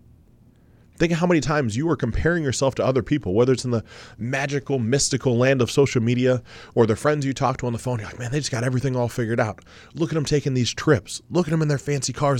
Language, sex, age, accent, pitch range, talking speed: English, male, 30-49, American, 95-135 Hz, 260 wpm